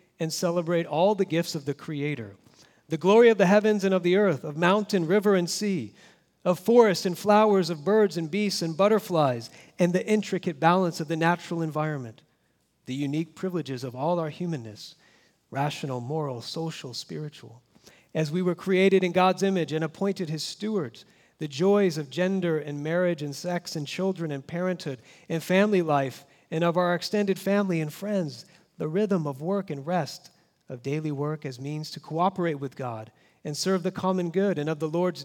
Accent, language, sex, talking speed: American, English, male, 185 wpm